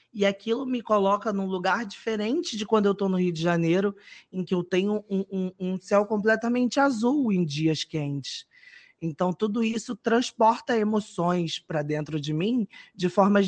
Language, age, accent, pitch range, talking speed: Portuguese, 20-39, Brazilian, 170-225 Hz, 170 wpm